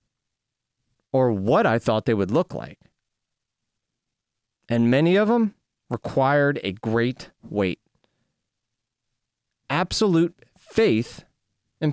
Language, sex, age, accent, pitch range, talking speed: English, male, 30-49, American, 115-150 Hz, 95 wpm